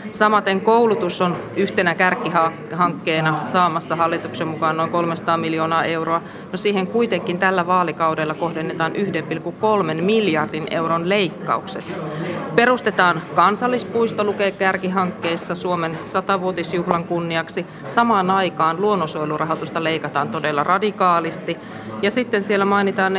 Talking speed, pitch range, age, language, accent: 100 wpm, 165-195 Hz, 30-49, Finnish, native